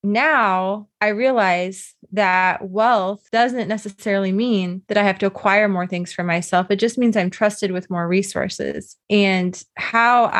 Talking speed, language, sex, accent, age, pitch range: 155 wpm, English, female, American, 20-39, 190-225 Hz